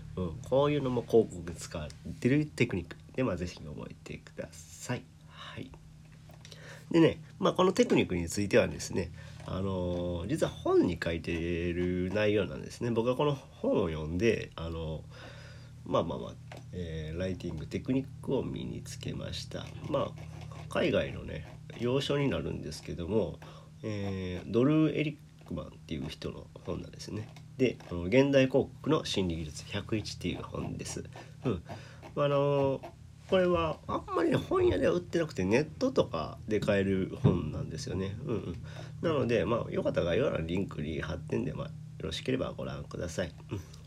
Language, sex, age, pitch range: Japanese, male, 40-59, 90-140 Hz